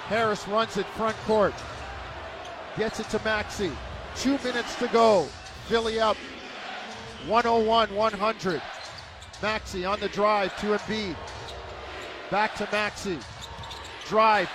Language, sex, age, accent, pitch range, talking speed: English, male, 40-59, American, 190-225 Hz, 110 wpm